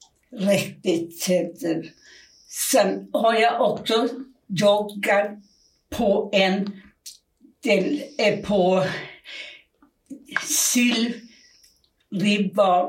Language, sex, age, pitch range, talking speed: Swedish, female, 60-79, 195-260 Hz, 65 wpm